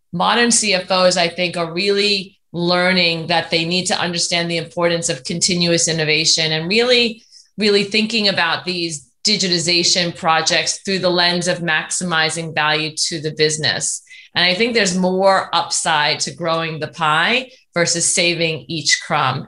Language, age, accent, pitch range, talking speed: English, 30-49, American, 165-195 Hz, 150 wpm